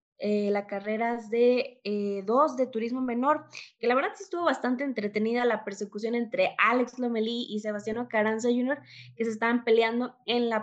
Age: 20-39